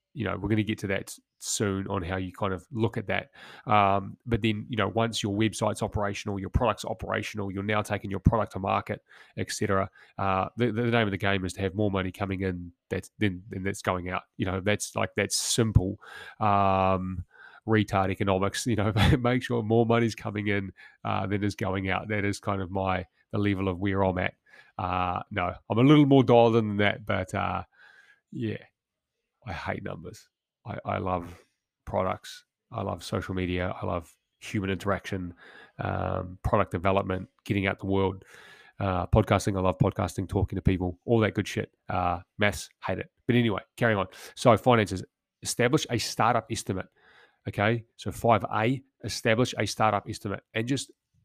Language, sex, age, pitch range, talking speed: English, male, 30-49, 95-115 Hz, 190 wpm